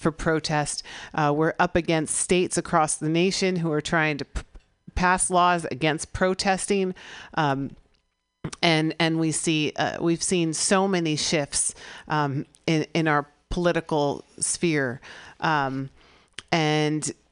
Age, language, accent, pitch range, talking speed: 40-59, English, American, 150-170 Hz, 130 wpm